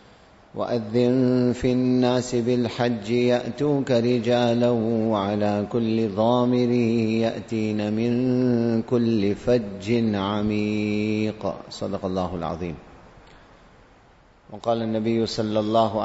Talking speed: 80 wpm